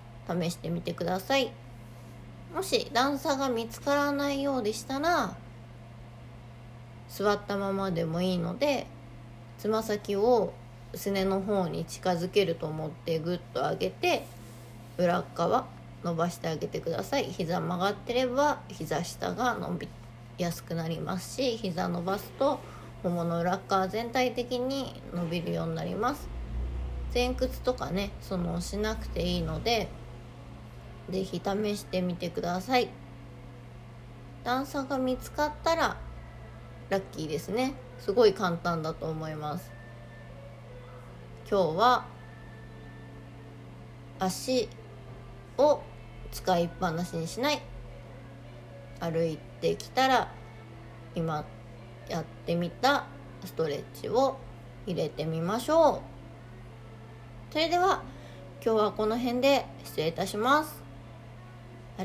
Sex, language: female, Japanese